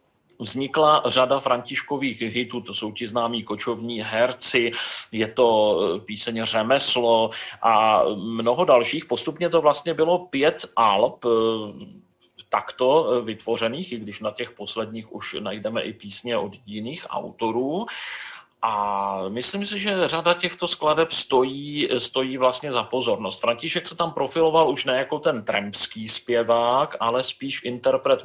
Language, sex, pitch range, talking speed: Czech, male, 115-145 Hz, 130 wpm